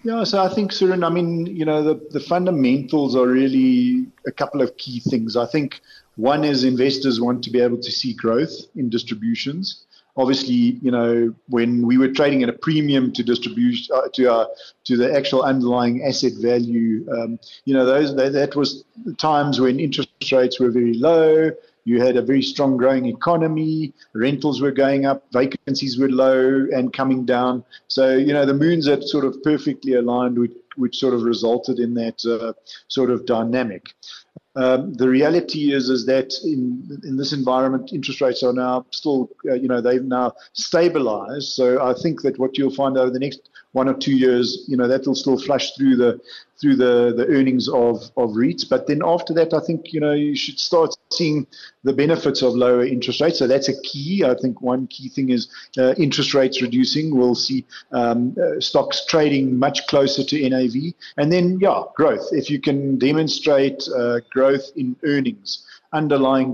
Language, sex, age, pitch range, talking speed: English, male, 40-59, 125-150 Hz, 190 wpm